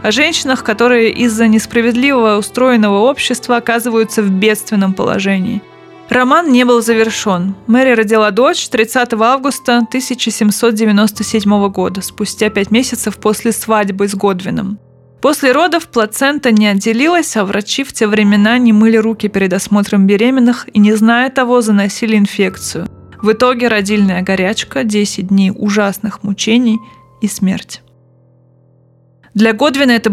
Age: 20-39